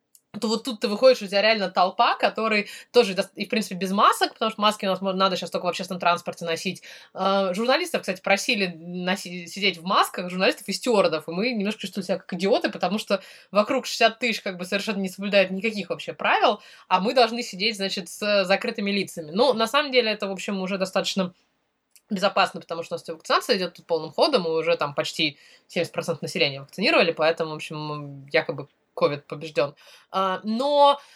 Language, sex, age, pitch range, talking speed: Russian, female, 20-39, 175-225 Hz, 195 wpm